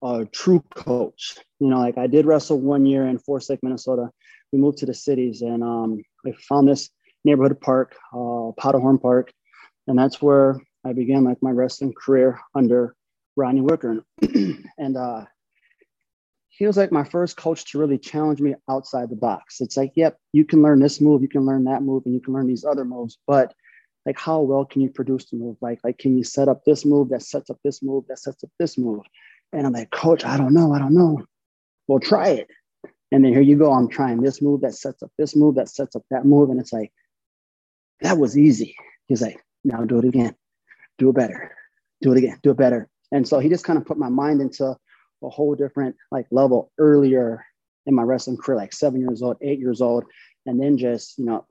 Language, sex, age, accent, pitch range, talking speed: English, male, 20-39, American, 125-145 Hz, 220 wpm